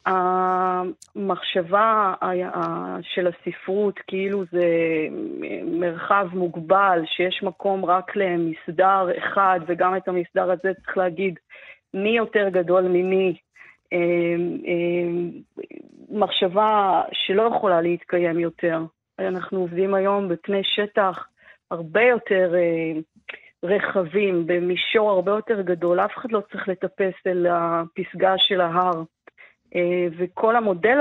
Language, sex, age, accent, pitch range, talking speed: Hebrew, female, 30-49, native, 175-210 Hz, 95 wpm